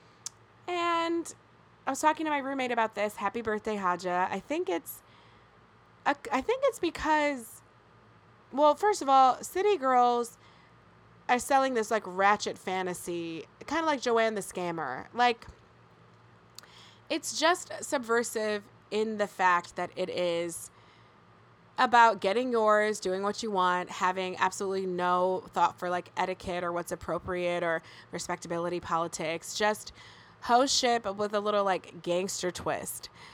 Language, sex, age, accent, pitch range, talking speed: English, female, 20-39, American, 185-245 Hz, 135 wpm